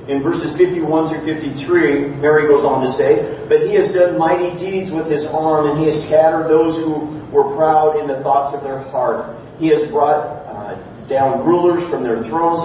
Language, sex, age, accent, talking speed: English, male, 40-59, American, 200 wpm